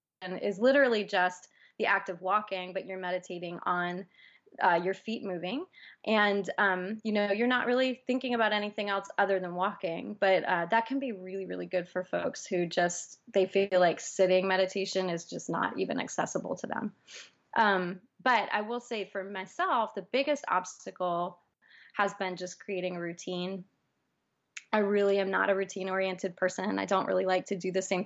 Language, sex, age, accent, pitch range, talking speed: English, female, 20-39, American, 180-210 Hz, 180 wpm